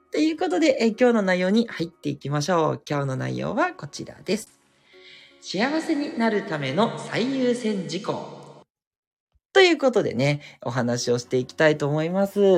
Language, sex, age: Japanese, male, 40-59